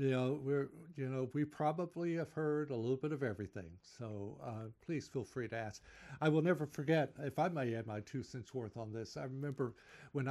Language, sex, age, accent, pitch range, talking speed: English, male, 60-79, American, 125-165 Hz, 220 wpm